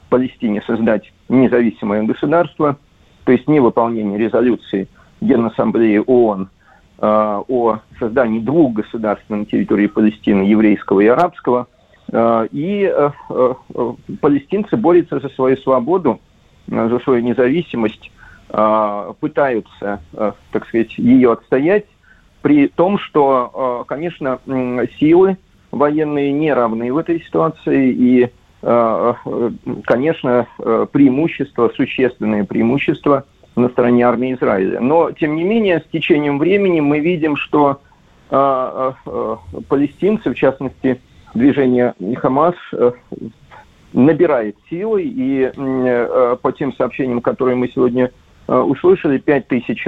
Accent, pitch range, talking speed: native, 115-145 Hz, 110 wpm